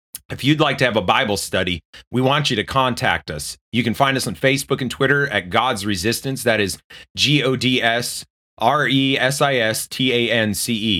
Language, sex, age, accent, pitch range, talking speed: English, male, 30-49, American, 105-135 Hz, 155 wpm